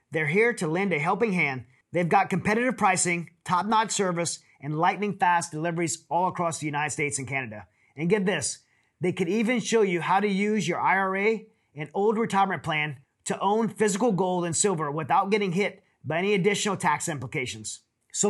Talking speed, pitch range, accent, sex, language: 180 wpm, 155-205 Hz, American, male, English